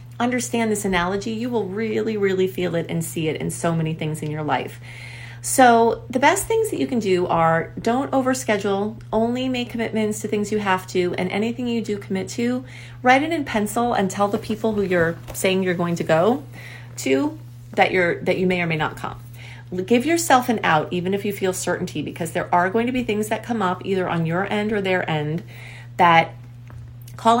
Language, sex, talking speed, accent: English, female, 210 wpm, American